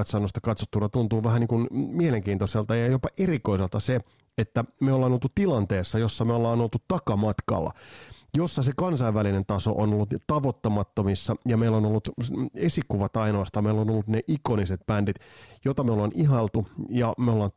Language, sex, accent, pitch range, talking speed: Finnish, male, native, 100-125 Hz, 160 wpm